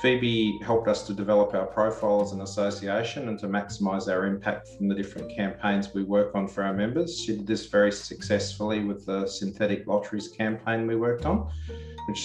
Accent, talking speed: Australian, 190 wpm